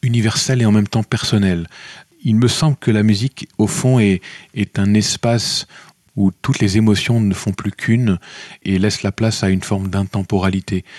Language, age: French, 40-59